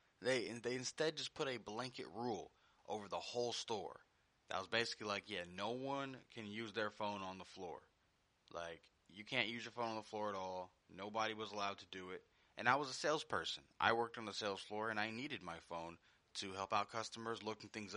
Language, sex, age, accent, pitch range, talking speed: English, male, 20-39, American, 105-125 Hz, 215 wpm